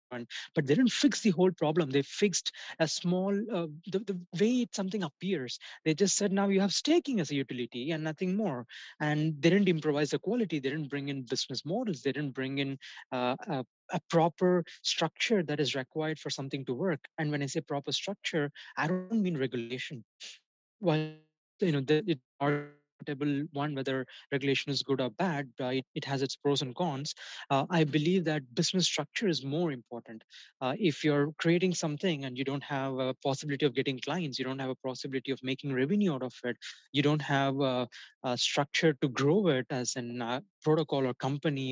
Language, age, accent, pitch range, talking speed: English, 20-39, Indian, 135-175 Hz, 195 wpm